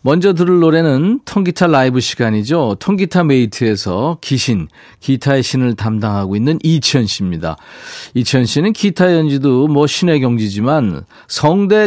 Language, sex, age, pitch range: Korean, male, 40-59, 115-170 Hz